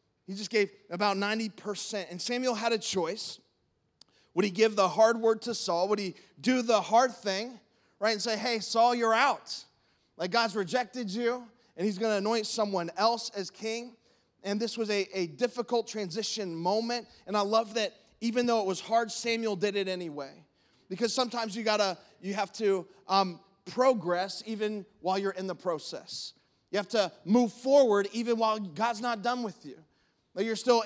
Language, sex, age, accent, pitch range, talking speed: English, male, 20-39, American, 185-225 Hz, 185 wpm